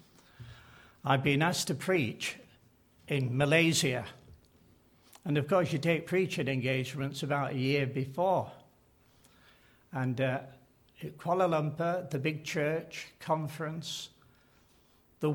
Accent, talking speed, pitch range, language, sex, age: British, 105 wpm, 140-185 Hz, English, male, 60-79